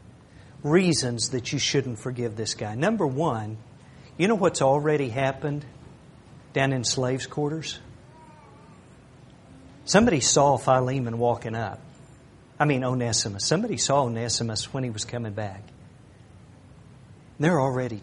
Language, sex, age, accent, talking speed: English, male, 50-69, American, 120 wpm